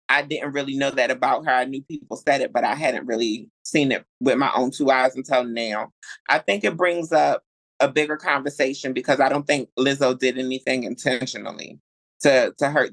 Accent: American